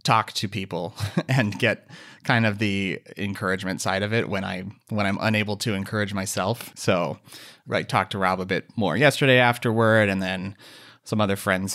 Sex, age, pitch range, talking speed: male, 30-49, 100-120 Hz, 180 wpm